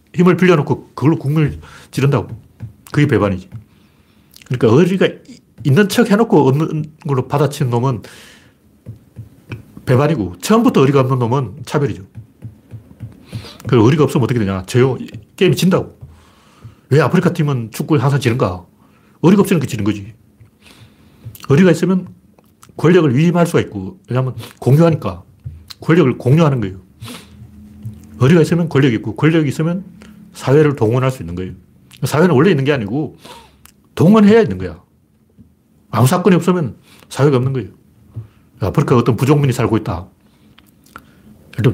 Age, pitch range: 40-59, 110-160 Hz